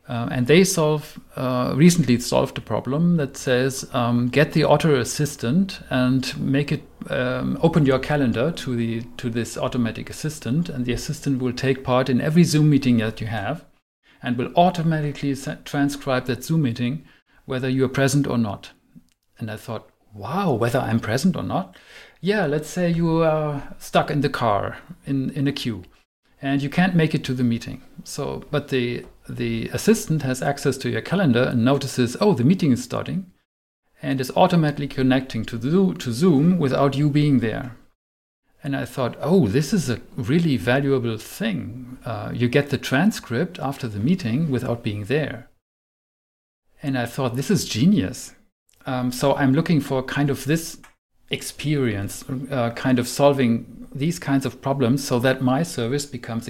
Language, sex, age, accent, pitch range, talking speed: English, male, 50-69, German, 120-150 Hz, 170 wpm